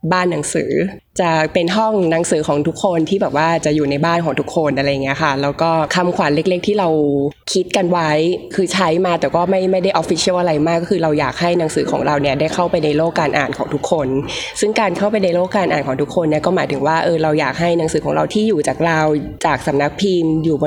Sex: female